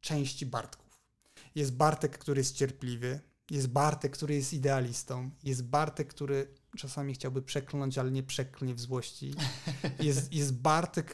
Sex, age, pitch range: male, 30-49, 135-155 Hz